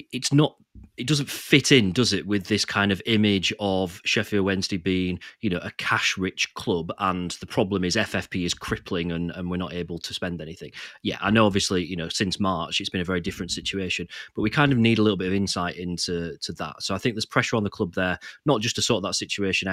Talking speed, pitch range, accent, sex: 245 wpm, 95-125 Hz, British, male